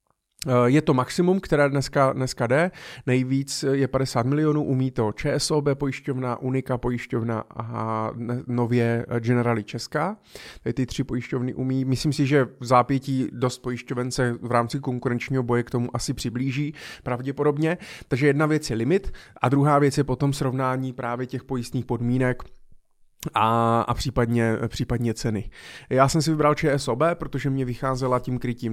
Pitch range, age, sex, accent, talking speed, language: 120-140 Hz, 30-49, male, native, 150 wpm, Czech